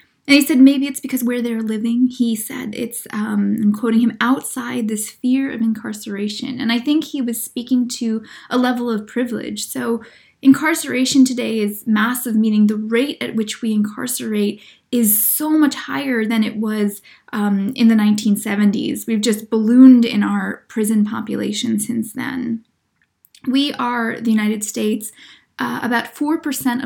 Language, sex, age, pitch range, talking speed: English, female, 10-29, 225-270 Hz, 160 wpm